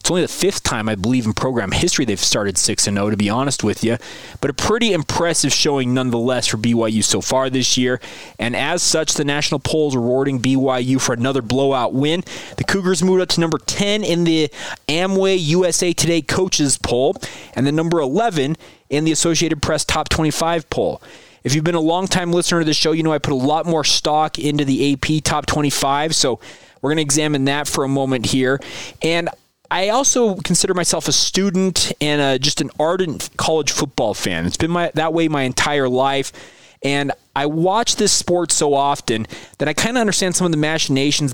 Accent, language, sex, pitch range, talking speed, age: American, English, male, 130-170 Hz, 210 wpm, 20-39